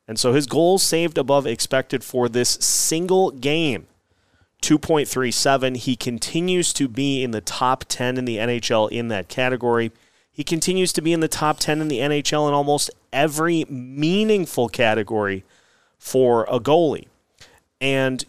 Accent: American